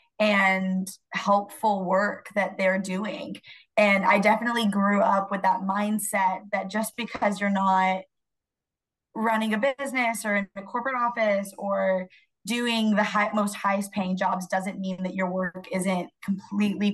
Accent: American